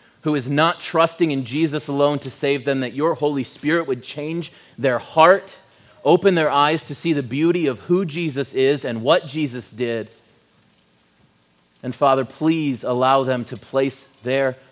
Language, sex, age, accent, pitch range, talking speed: English, male, 30-49, American, 120-150 Hz, 165 wpm